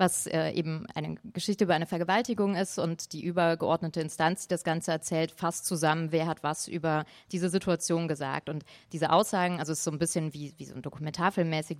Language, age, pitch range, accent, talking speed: German, 30-49, 160-180 Hz, German, 205 wpm